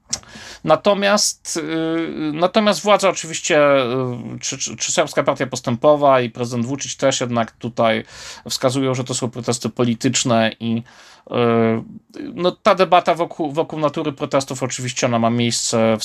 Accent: native